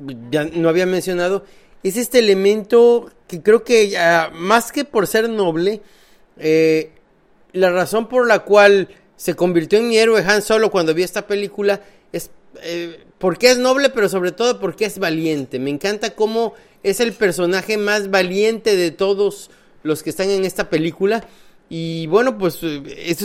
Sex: male